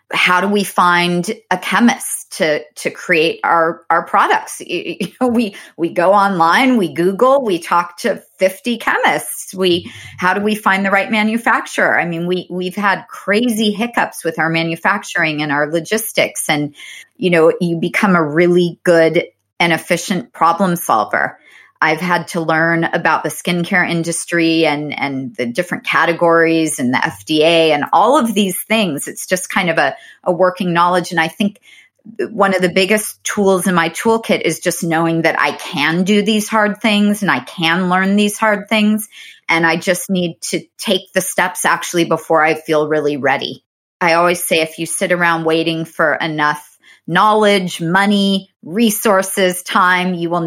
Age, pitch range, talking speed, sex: 30-49, 165-205 Hz, 170 wpm, female